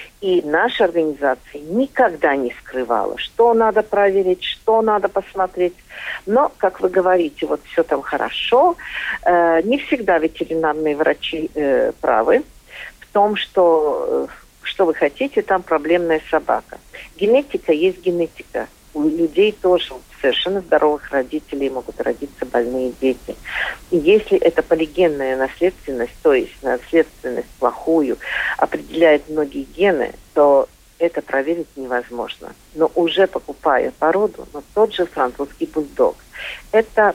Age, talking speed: 50-69, 120 wpm